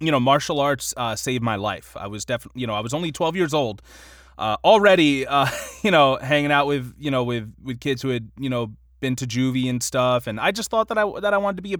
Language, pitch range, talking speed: English, 110-150 Hz, 270 wpm